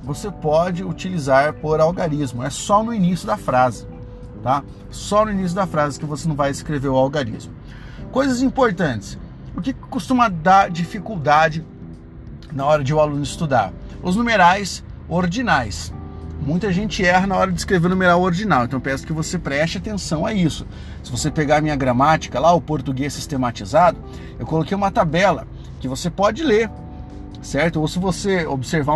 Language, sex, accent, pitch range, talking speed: Portuguese, male, Brazilian, 130-190 Hz, 170 wpm